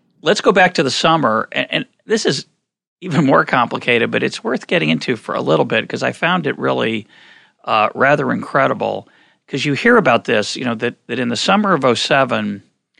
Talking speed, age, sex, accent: 205 wpm, 40-59, male, American